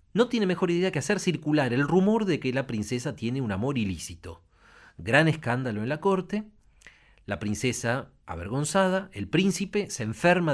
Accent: Argentinian